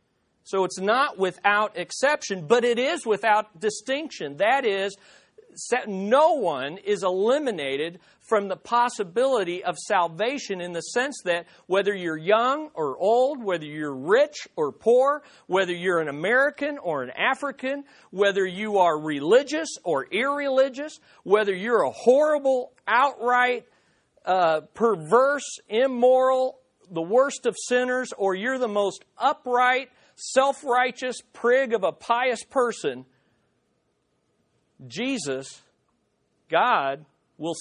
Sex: male